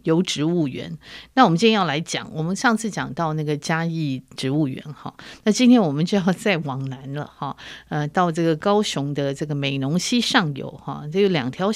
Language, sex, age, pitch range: Chinese, female, 50-69, 145-205 Hz